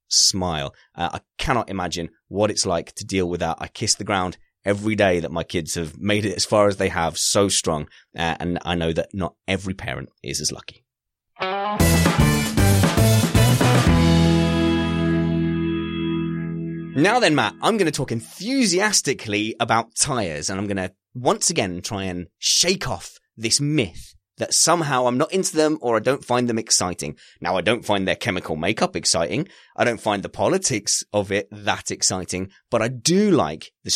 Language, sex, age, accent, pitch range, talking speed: English, male, 30-49, British, 85-120 Hz, 175 wpm